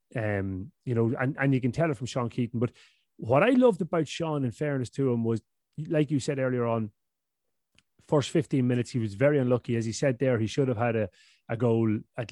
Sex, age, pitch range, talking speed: male, 30-49, 120-145 Hz, 230 wpm